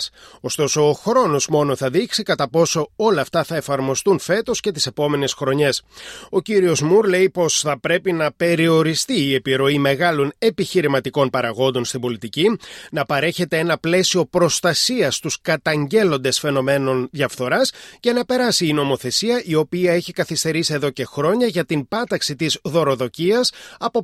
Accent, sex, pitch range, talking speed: native, male, 140-190 Hz, 150 wpm